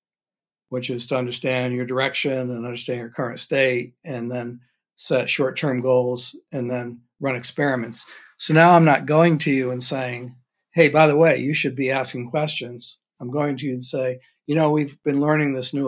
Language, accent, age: English, American, 60-79